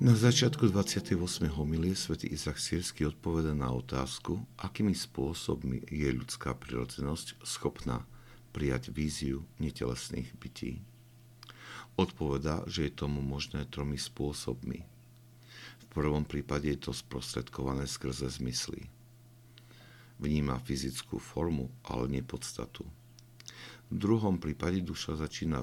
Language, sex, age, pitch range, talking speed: Slovak, male, 60-79, 65-110 Hz, 105 wpm